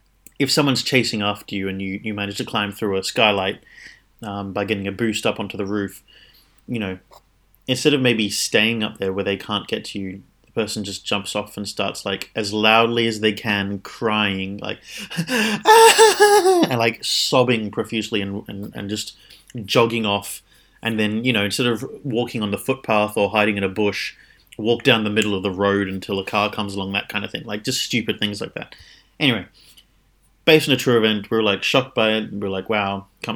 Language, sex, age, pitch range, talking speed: English, male, 30-49, 100-125 Hz, 205 wpm